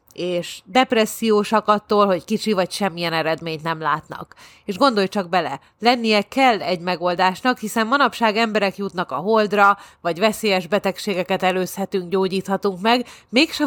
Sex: female